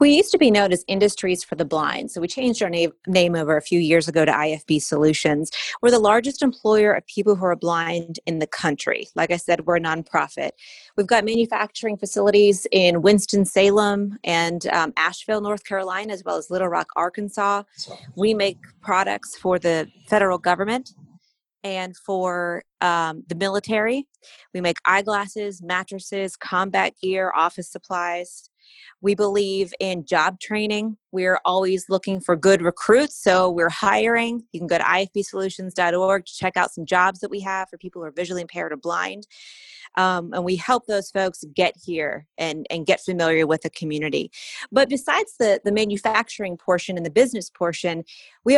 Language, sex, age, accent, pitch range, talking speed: English, female, 30-49, American, 170-210 Hz, 175 wpm